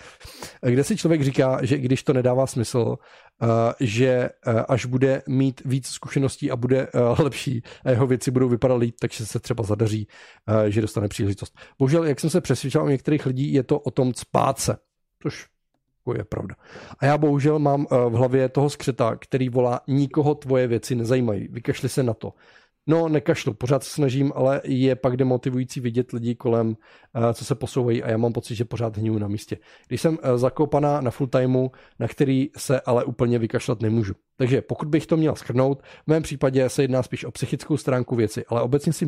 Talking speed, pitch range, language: 185 wpm, 115-140 Hz, Czech